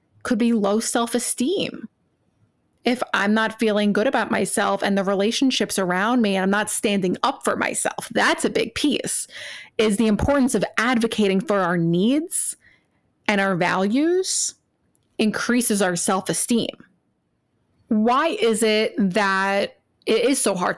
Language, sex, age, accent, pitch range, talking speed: English, female, 20-39, American, 190-230 Hz, 140 wpm